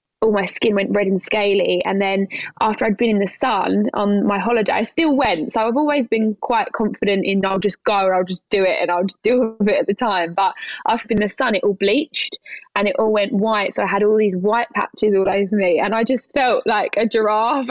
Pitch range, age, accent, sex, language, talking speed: 190-230 Hz, 20-39, British, female, English, 255 wpm